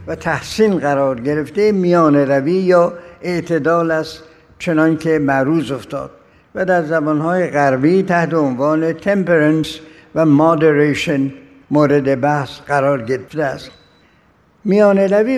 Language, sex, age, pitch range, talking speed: Persian, male, 60-79, 150-185 Hz, 110 wpm